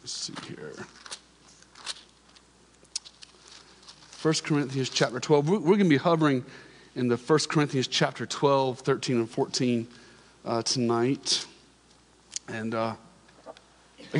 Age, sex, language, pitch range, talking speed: 40-59, male, English, 140-185 Hz, 110 wpm